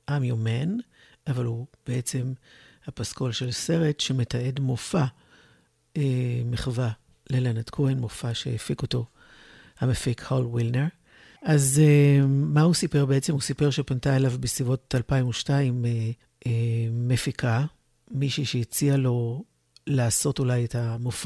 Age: 60-79